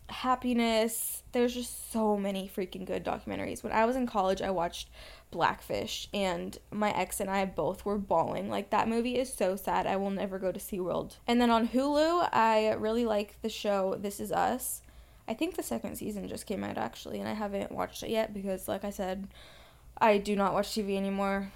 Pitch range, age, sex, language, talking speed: 185-215 Hz, 10-29, female, English, 205 wpm